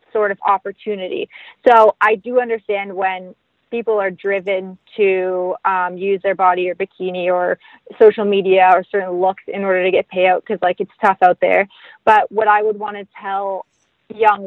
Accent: American